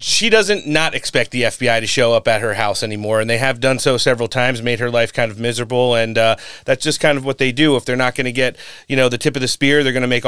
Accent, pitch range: American, 120-150 Hz